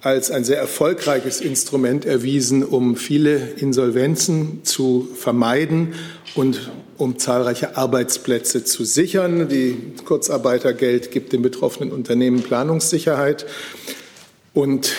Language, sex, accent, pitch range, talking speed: German, male, German, 125-155 Hz, 100 wpm